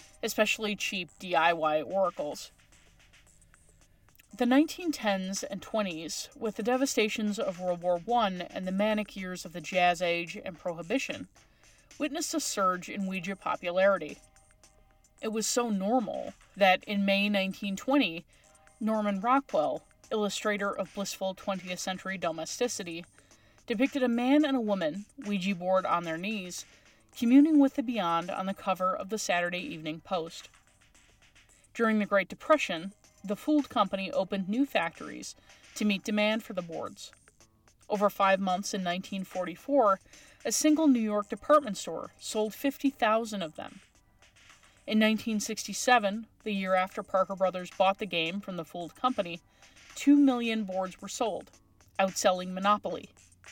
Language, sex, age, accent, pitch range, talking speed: English, female, 30-49, American, 180-225 Hz, 135 wpm